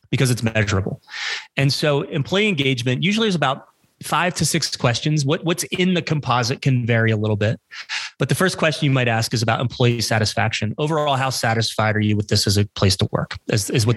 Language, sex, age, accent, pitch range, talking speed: English, male, 30-49, American, 115-135 Hz, 205 wpm